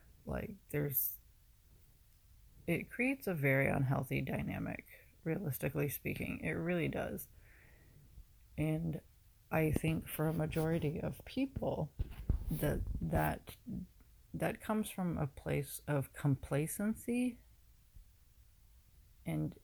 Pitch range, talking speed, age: 115-160 Hz, 95 wpm, 40-59